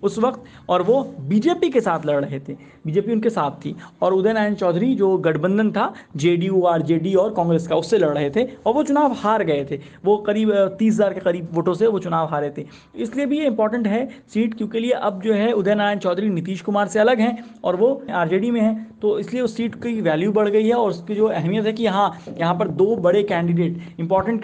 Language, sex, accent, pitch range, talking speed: Hindi, male, native, 170-215 Hz, 235 wpm